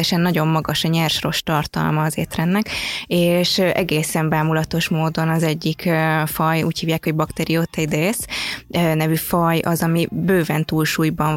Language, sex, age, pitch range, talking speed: Hungarian, female, 20-39, 160-180 Hz, 125 wpm